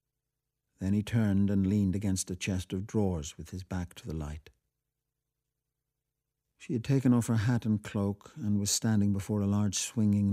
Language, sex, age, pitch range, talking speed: English, male, 60-79, 95-140 Hz, 180 wpm